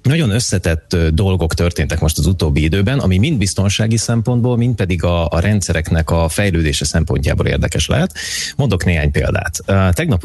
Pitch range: 80-100 Hz